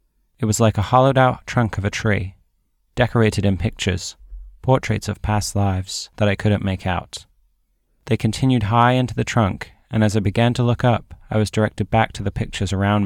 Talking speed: 200 wpm